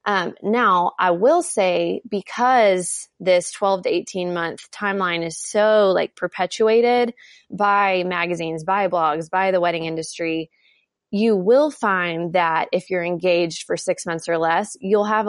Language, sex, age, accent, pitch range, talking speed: English, female, 20-39, American, 170-205 Hz, 150 wpm